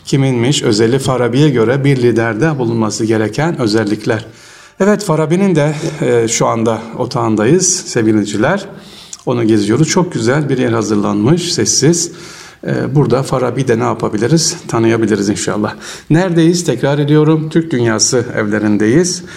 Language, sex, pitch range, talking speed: Turkish, male, 115-165 Hz, 115 wpm